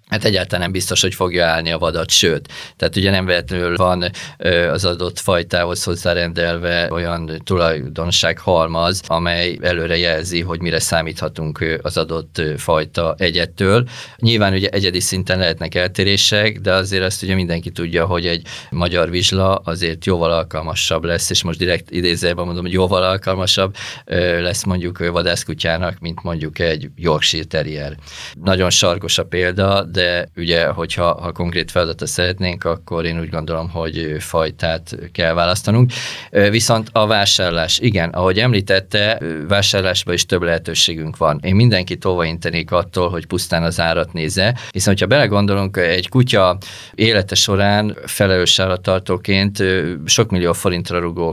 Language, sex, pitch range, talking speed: Hungarian, male, 85-100 Hz, 145 wpm